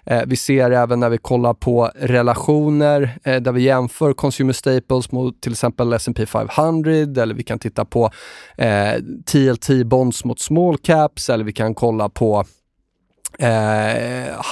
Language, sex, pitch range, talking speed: Swedish, male, 115-140 Hz, 150 wpm